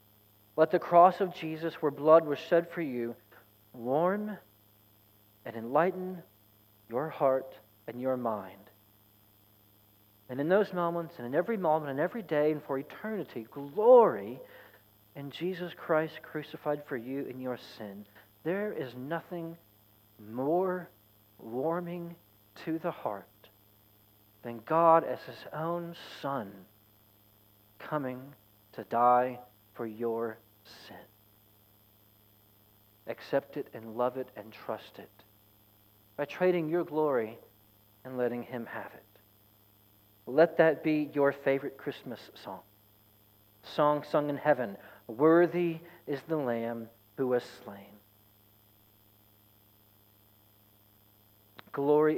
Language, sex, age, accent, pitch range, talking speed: English, male, 40-59, American, 105-155 Hz, 115 wpm